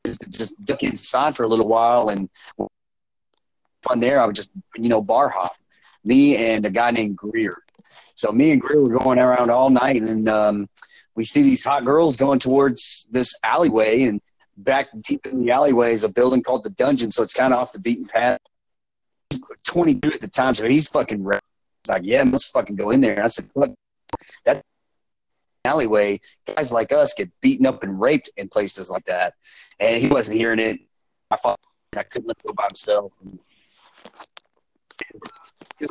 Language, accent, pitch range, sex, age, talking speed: English, American, 110-150 Hz, male, 30-49, 180 wpm